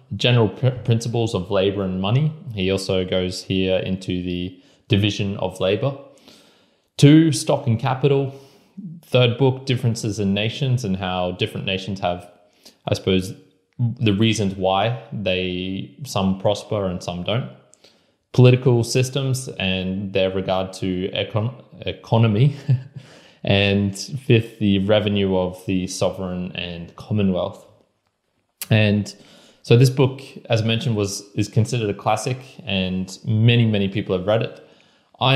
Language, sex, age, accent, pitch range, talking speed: English, male, 20-39, Australian, 95-115 Hz, 130 wpm